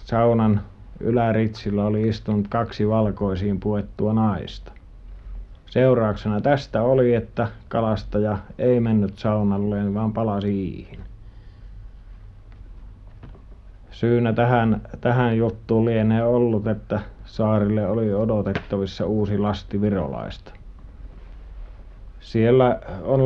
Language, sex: Finnish, male